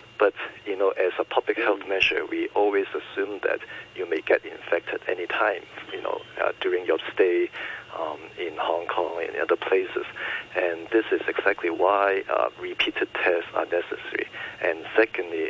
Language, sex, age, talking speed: English, male, 50-69, 165 wpm